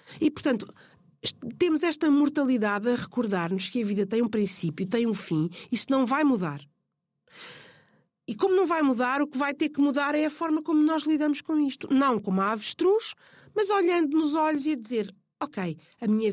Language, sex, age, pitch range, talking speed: Portuguese, female, 50-69, 195-280 Hz, 195 wpm